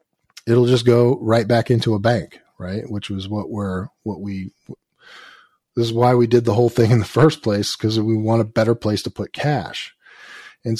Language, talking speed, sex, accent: English, 200 wpm, male, American